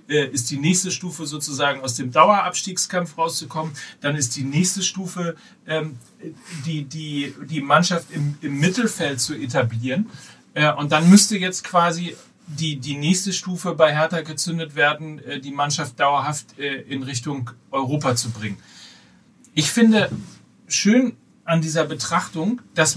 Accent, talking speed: German, 135 wpm